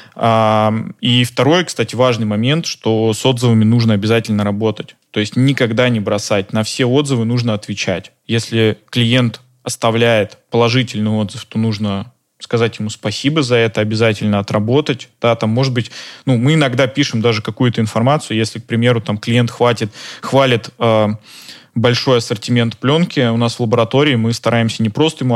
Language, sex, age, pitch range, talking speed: Russian, male, 20-39, 110-130 Hz, 140 wpm